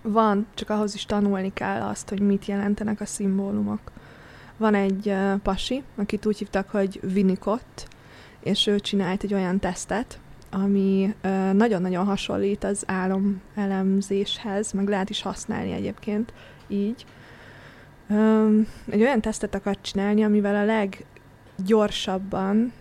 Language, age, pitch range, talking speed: Hungarian, 20-39, 190-210 Hz, 130 wpm